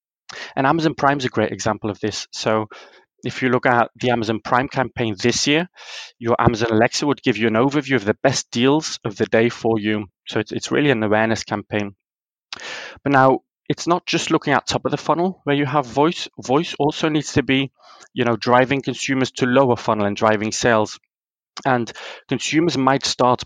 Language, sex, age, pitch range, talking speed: English, male, 20-39, 110-140 Hz, 200 wpm